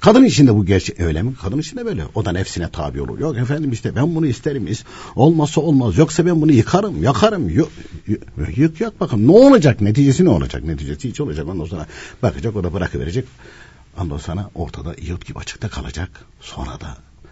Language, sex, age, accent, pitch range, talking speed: Turkish, male, 60-79, native, 75-115 Hz, 195 wpm